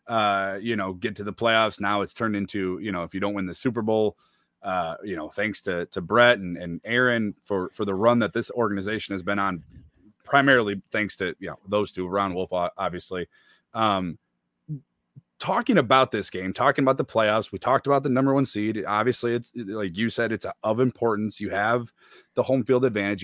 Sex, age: male, 30-49